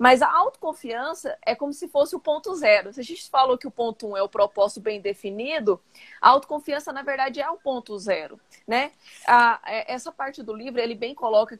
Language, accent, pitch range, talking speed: Portuguese, Brazilian, 215-285 Hz, 210 wpm